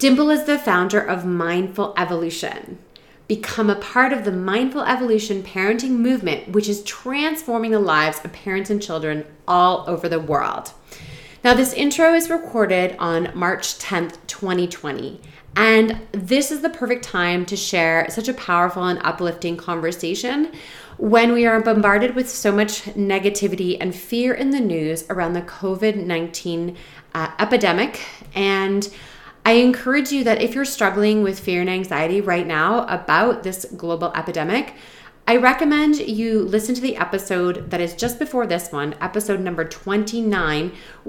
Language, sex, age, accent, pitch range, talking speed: English, female, 30-49, American, 175-245 Hz, 150 wpm